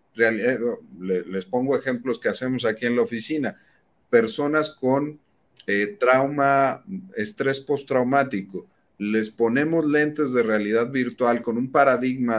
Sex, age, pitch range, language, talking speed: male, 40-59, 110-150 Hz, Spanish, 120 wpm